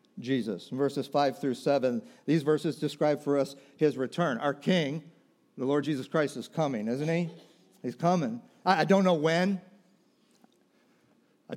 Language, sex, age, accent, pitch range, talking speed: English, male, 50-69, American, 130-185 Hz, 155 wpm